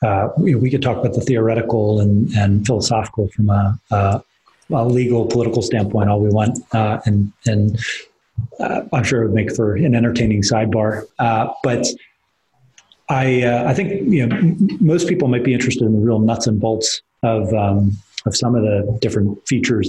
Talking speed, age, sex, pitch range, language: 185 wpm, 30-49, male, 105-125 Hz, English